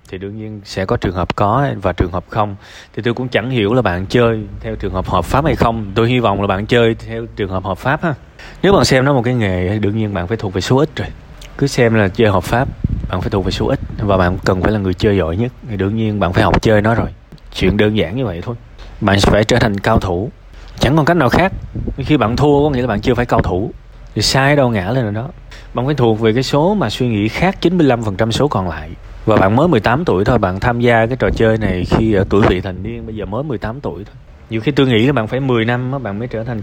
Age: 20-39